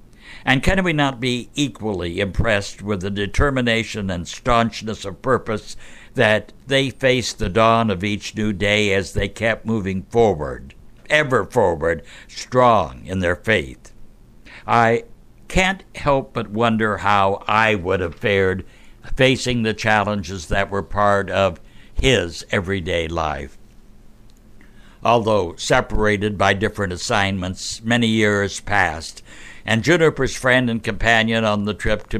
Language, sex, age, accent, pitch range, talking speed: English, male, 60-79, American, 100-125 Hz, 130 wpm